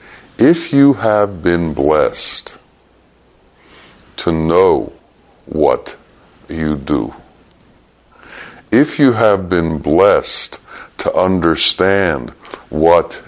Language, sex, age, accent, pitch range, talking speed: English, female, 60-79, American, 80-105 Hz, 80 wpm